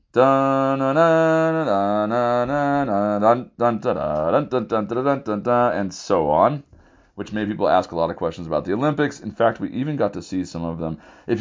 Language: English